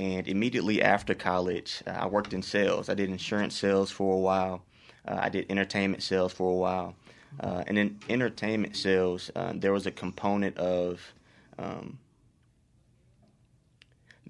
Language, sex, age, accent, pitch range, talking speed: English, male, 20-39, American, 90-100 Hz, 150 wpm